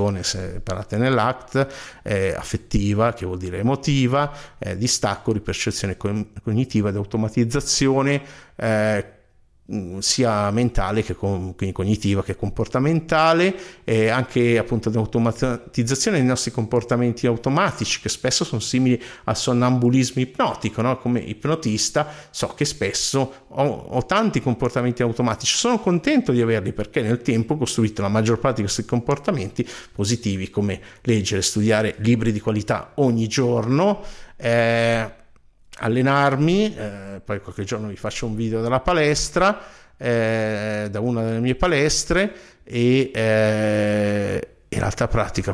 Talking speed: 125 wpm